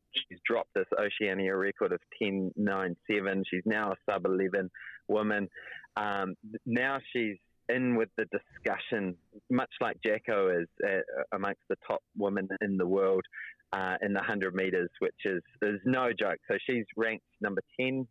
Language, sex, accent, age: English, male, Australian, 20-39